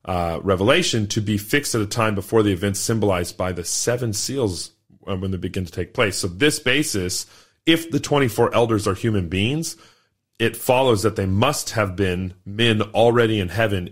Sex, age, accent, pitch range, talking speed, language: male, 30-49, American, 95-115 Hz, 185 wpm, English